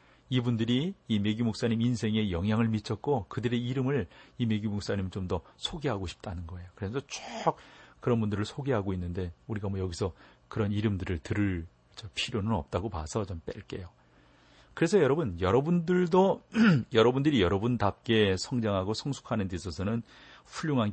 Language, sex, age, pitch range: Korean, male, 40-59, 95-135 Hz